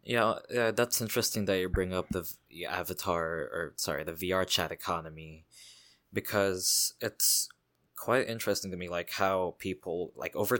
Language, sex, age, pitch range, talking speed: English, male, 20-39, 85-105 Hz, 155 wpm